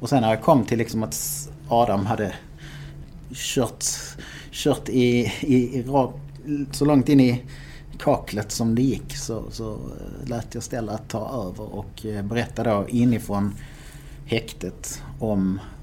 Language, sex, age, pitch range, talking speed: Swedish, male, 30-49, 105-130 Hz, 140 wpm